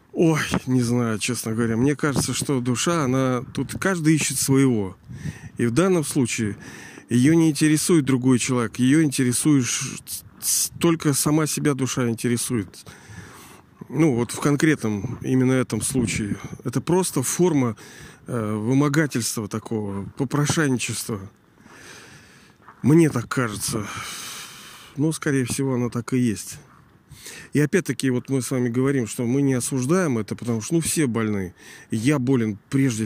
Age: 40-59